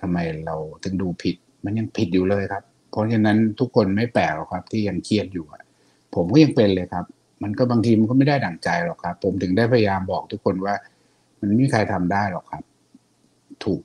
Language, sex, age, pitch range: Thai, male, 60-79, 90-110 Hz